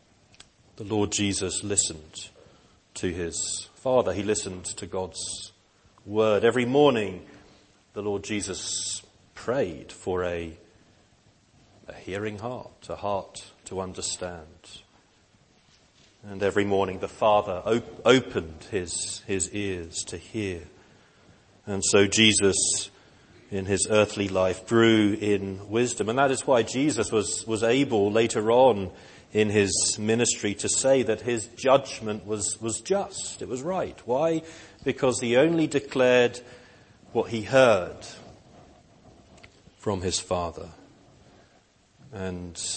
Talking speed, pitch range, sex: 120 wpm, 95-115 Hz, male